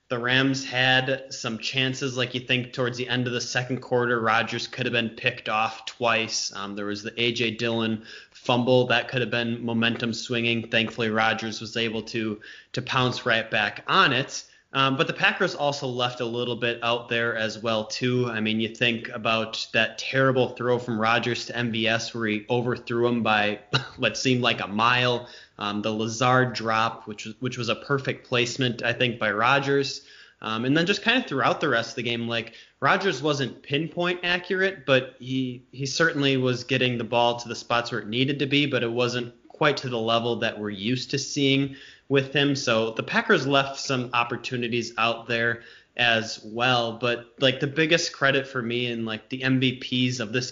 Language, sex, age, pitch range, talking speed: English, male, 20-39, 115-130 Hz, 200 wpm